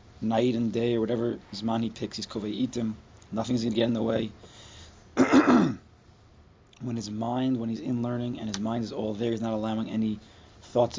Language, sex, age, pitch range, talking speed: English, male, 30-49, 100-120 Hz, 195 wpm